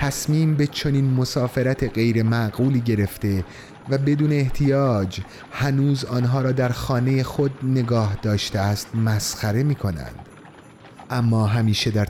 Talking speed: 120 wpm